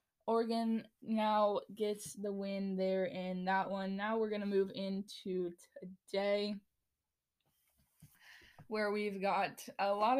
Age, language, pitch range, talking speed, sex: 10-29, English, 190-215 Hz, 125 wpm, female